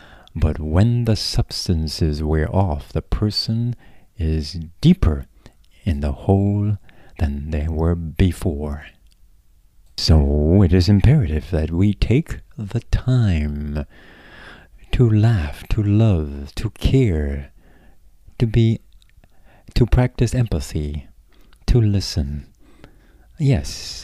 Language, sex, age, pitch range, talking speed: English, male, 60-79, 75-100 Hz, 95 wpm